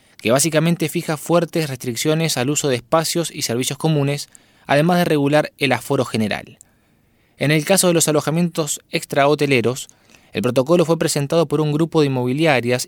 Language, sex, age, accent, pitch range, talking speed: Spanish, male, 20-39, Argentinian, 125-160 Hz, 160 wpm